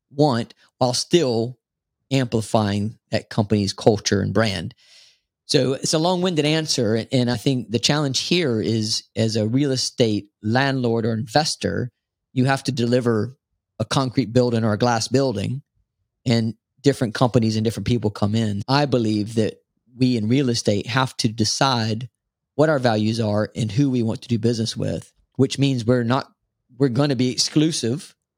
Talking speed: 165 wpm